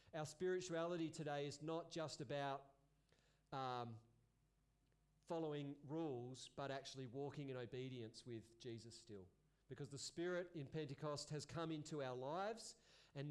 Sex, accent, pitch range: male, Australian, 135-160 Hz